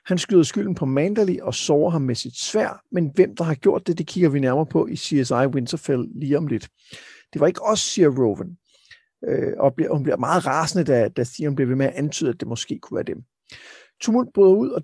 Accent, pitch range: native, 140-185 Hz